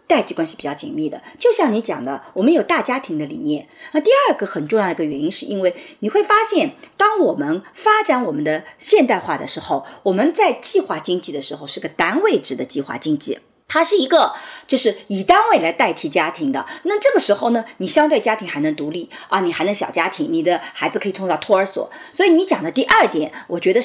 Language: Chinese